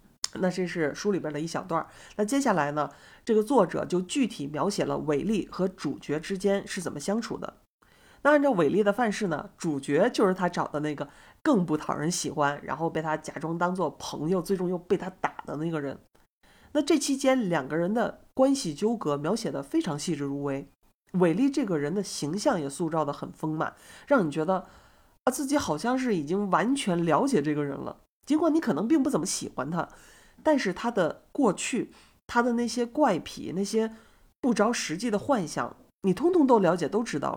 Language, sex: Chinese, male